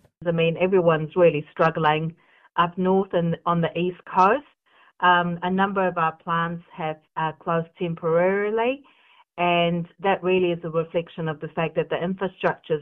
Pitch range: 160-195 Hz